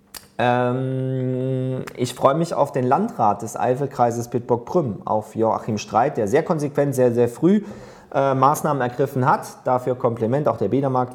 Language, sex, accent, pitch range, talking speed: German, male, German, 125-170 Hz, 150 wpm